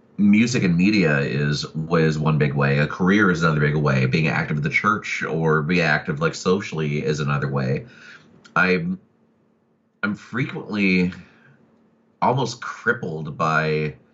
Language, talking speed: English, 140 wpm